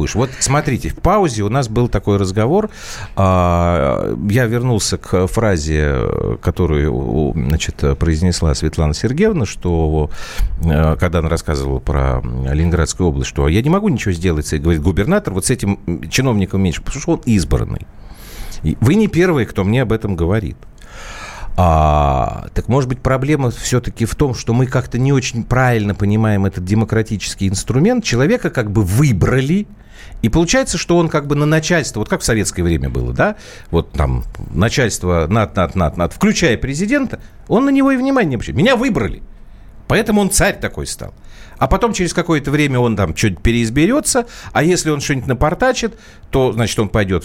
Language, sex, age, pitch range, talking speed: Russian, male, 40-59, 90-140 Hz, 165 wpm